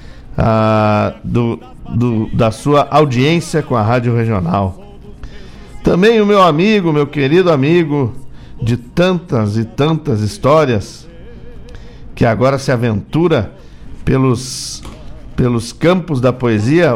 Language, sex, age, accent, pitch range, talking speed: Portuguese, male, 60-79, Brazilian, 115-175 Hz, 105 wpm